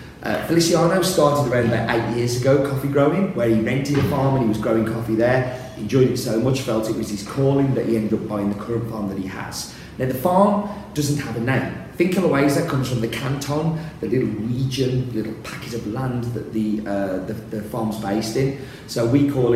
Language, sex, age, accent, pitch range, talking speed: English, male, 30-49, British, 110-135 Hz, 225 wpm